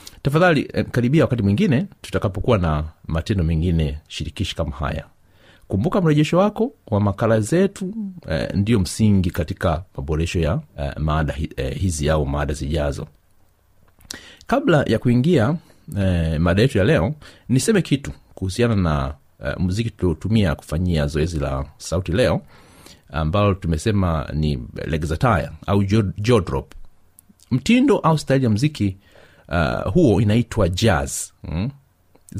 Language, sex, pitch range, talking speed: Swahili, male, 85-125 Hz, 120 wpm